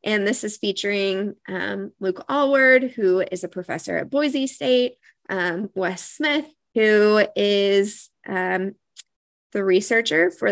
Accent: American